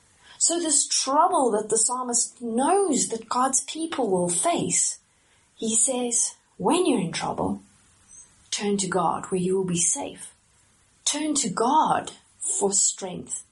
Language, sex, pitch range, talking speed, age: English, female, 185-290 Hz, 140 wpm, 30-49